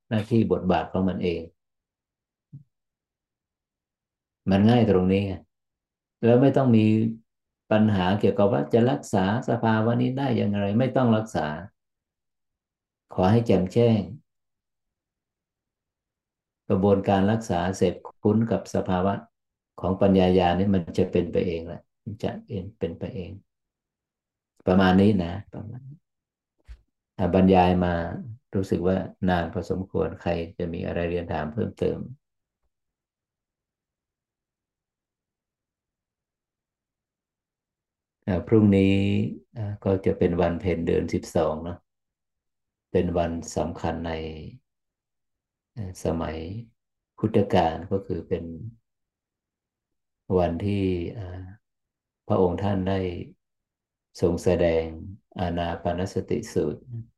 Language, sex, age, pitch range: Thai, male, 50-69, 85-110 Hz